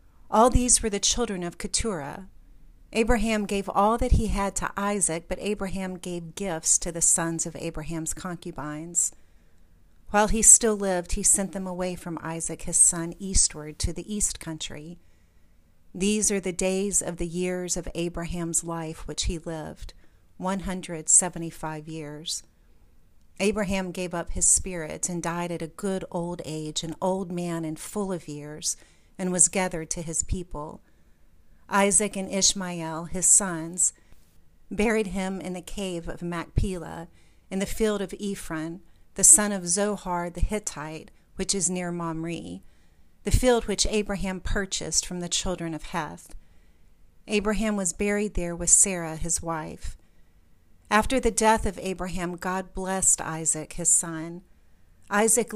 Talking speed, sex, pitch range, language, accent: 150 wpm, female, 155-195 Hz, English, American